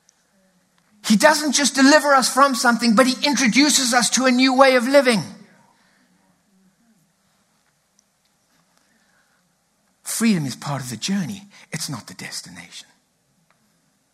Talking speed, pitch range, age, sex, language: 115 wpm, 165-250 Hz, 60-79, male, English